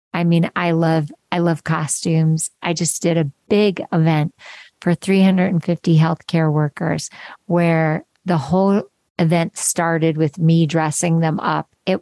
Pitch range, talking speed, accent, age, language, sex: 165-200 Hz, 140 wpm, American, 50-69, English, female